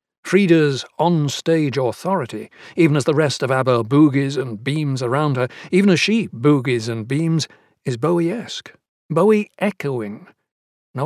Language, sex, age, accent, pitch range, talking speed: English, male, 60-79, British, 130-165 Hz, 135 wpm